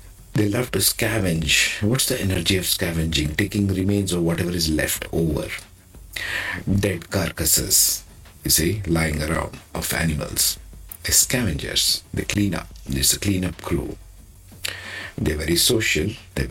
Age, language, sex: 50-69, English, male